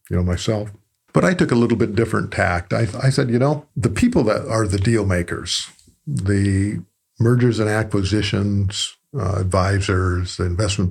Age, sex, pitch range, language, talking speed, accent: 50-69, male, 95-115 Hz, English, 165 wpm, American